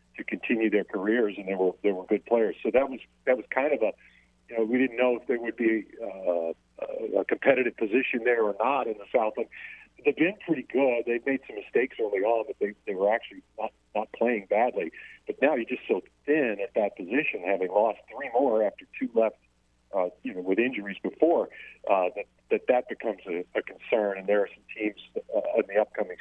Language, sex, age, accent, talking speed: English, male, 50-69, American, 220 wpm